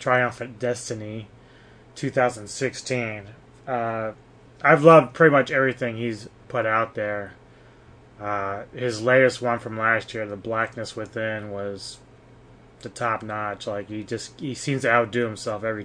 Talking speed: 145 wpm